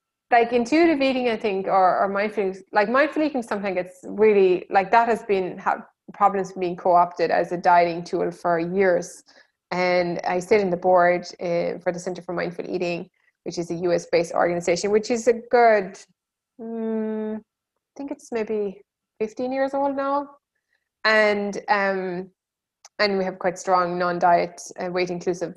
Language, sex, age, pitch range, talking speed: English, female, 20-39, 180-230 Hz, 160 wpm